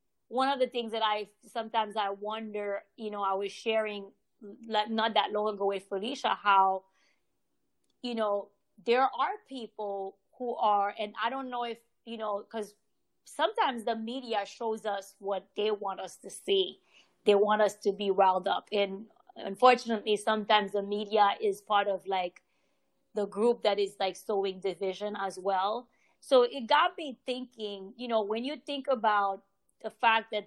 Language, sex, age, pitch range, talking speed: English, female, 20-39, 205-250 Hz, 170 wpm